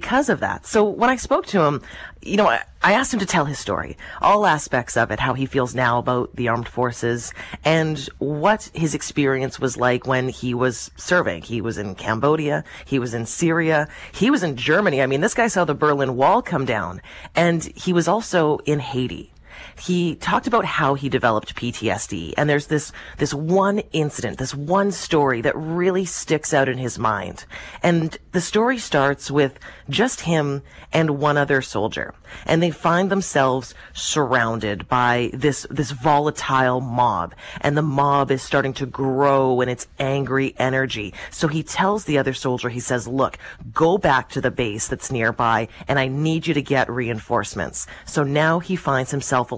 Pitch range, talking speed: 125-160 Hz, 185 wpm